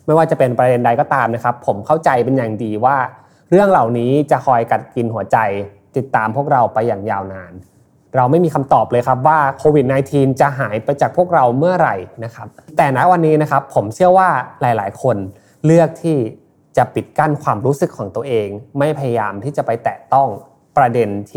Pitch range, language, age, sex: 115-150 Hz, Thai, 20-39, male